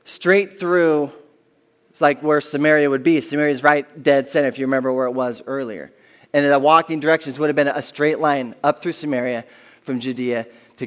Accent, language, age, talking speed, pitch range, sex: American, English, 20-39, 190 wpm, 135-165 Hz, male